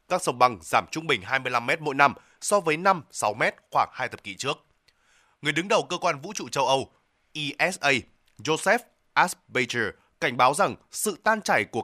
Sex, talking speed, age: male, 195 wpm, 20-39